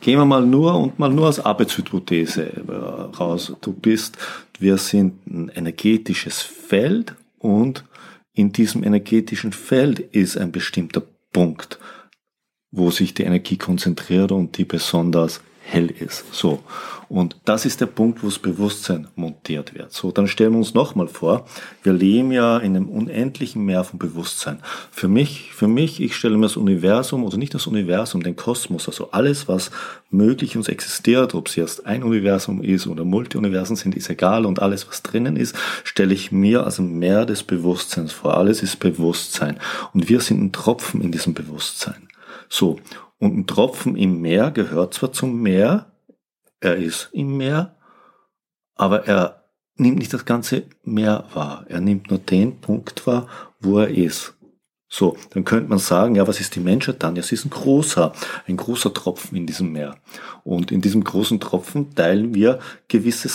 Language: German